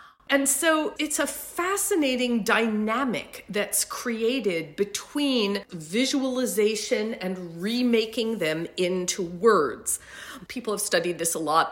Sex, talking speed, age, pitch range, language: female, 110 wpm, 40-59, 205-295 Hz, English